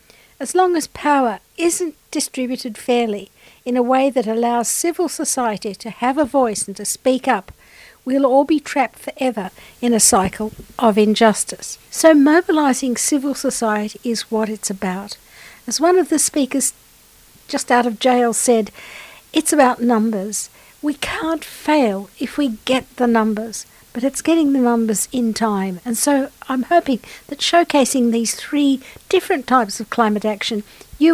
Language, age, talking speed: English, 60-79, 160 wpm